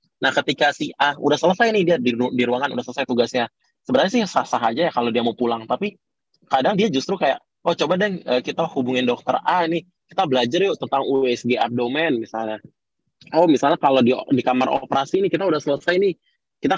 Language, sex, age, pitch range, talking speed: Indonesian, male, 20-39, 120-155 Hz, 195 wpm